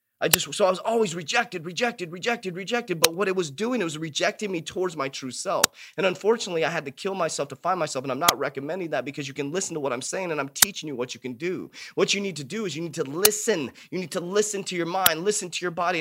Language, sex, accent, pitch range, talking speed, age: English, male, American, 150-195 Hz, 280 wpm, 30-49